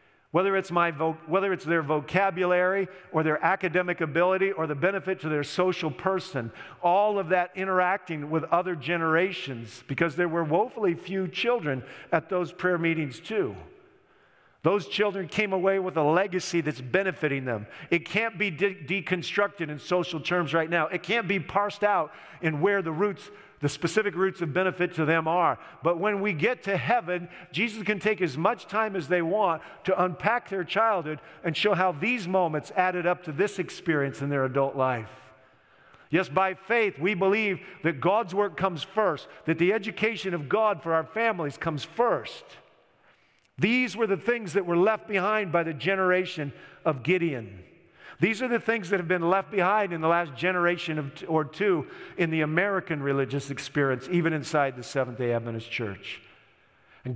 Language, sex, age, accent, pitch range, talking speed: English, male, 50-69, American, 160-195 Hz, 170 wpm